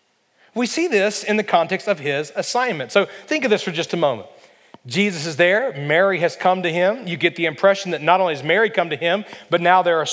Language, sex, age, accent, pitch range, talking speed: English, male, 40-59, American, 165-210 Hz, 245 wpm